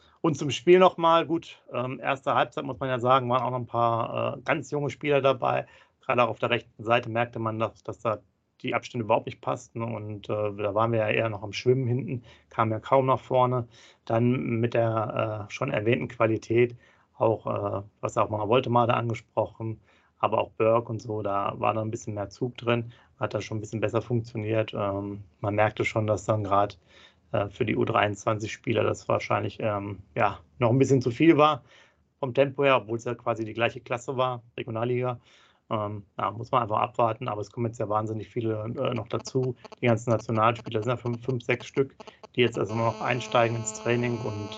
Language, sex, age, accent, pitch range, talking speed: German, male, 30-49, German, 110-125 Hz, 205 wpm